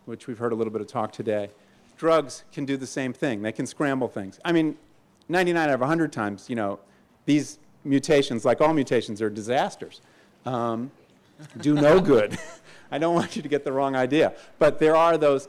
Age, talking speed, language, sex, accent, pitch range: 40-59, 200 wpm, English, male, American, 115-155 Hz